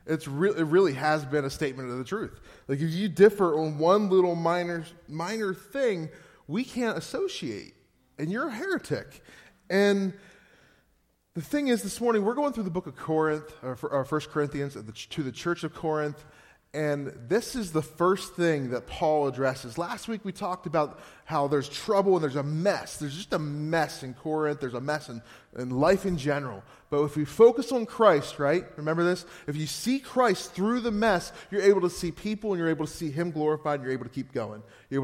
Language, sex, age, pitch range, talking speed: English, male, 20-39, 140-185 Hz, 210 wpm